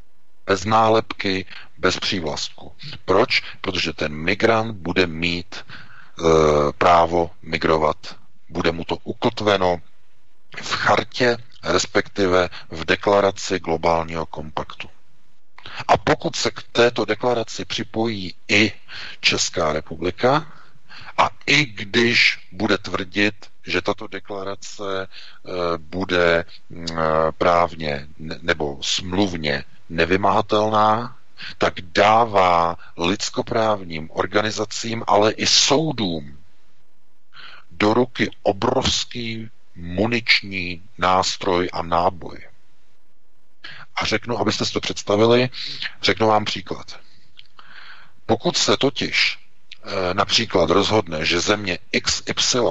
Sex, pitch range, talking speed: male, 85-110 Hz, 90 wpm